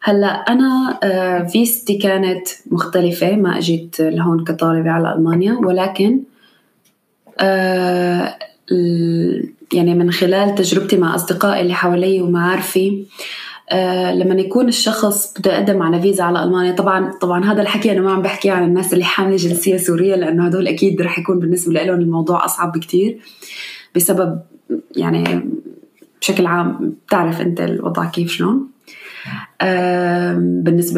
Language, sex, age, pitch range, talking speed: Arabic, female, 20-39, 175-195 Hz, 125 wpm